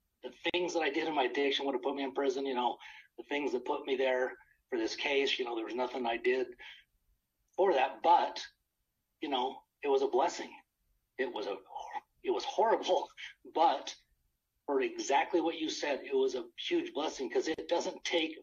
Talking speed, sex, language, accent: 200 wpm, male, English, American